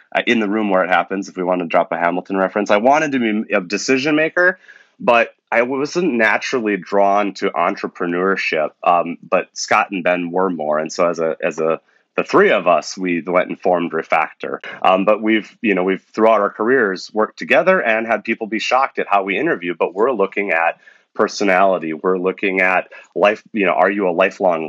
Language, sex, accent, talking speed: English, male, American, 210 wpm